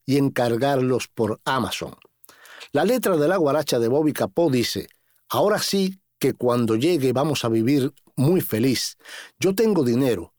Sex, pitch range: male, 120-165 Hz